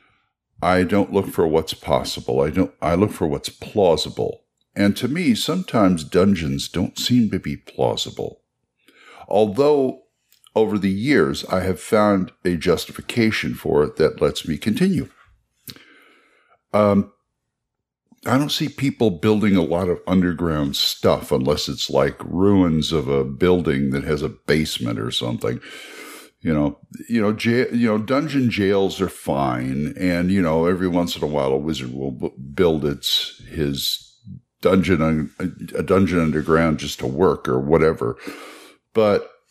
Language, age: English, 60-79